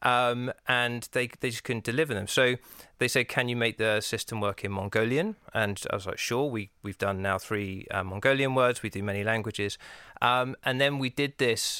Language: English